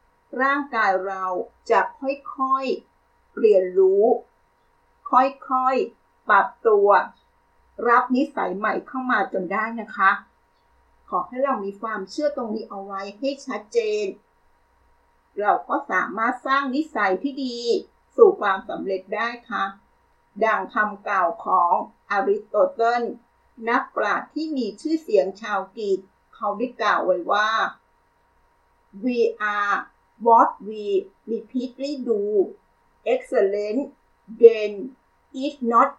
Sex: female